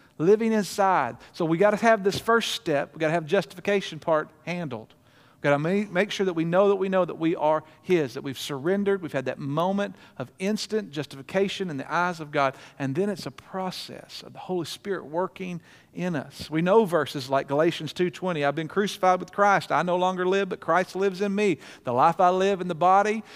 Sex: male